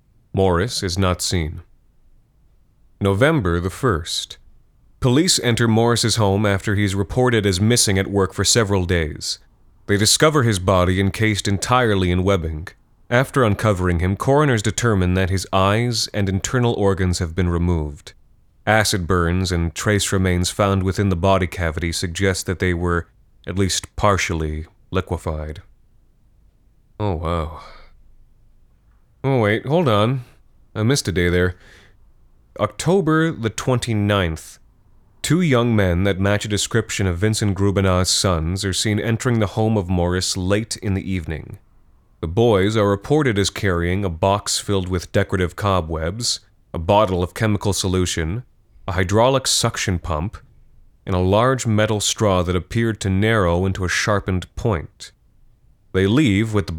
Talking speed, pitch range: 145 wpm, 90-110 Hz